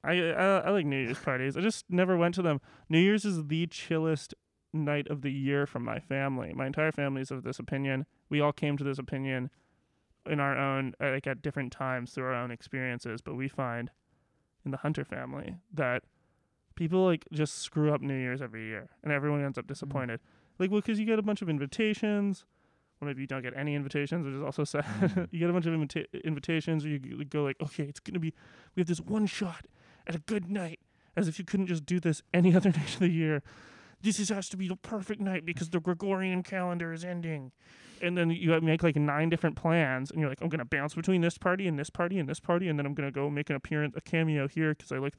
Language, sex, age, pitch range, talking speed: English, male, 20-39, 140-175 Hz, 240 wpm